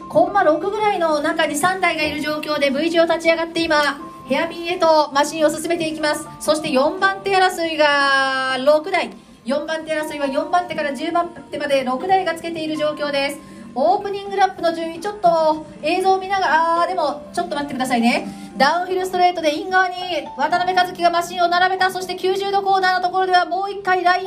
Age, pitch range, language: 40-59, 300-360 Hz, Japanese